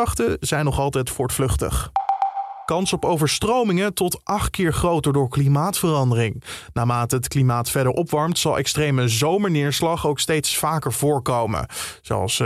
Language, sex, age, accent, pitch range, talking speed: Dutch, male, 20-39, Dutch, 125-160 Hz, 125 wpm